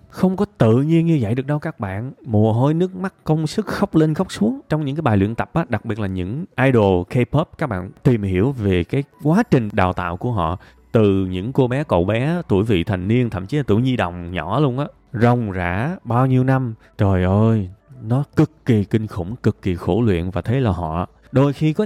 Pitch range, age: 105-155 Hz, 20-39